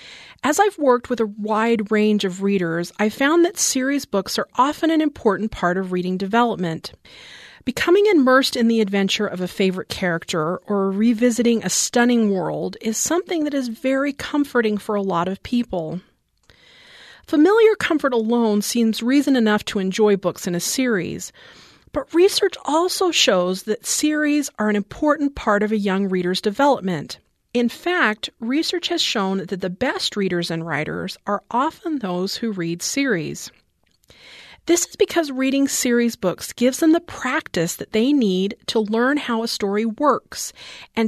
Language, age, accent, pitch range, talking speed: English, 40-59, American, 195-275 Hz, 160 wpm